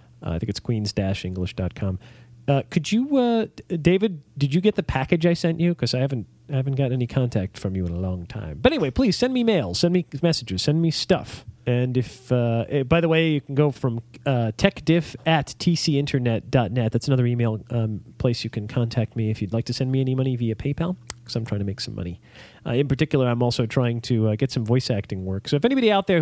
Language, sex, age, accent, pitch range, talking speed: English, male, 40-59, American, 110-150 Hz, 230 wpm